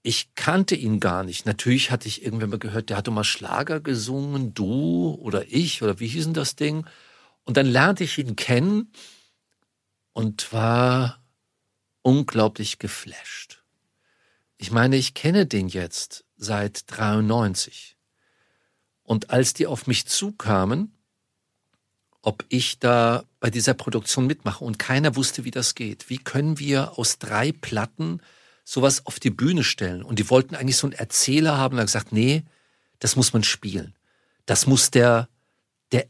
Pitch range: 110-140 Hz